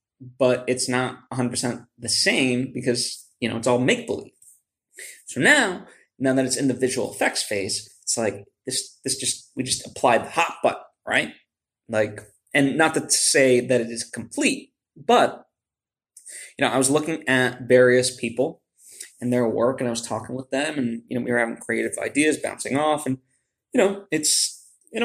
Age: 20-39